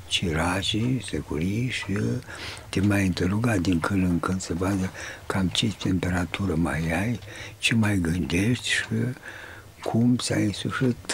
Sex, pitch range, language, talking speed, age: male, 95-115 Hz, Romanian, 135 wpm, 60-79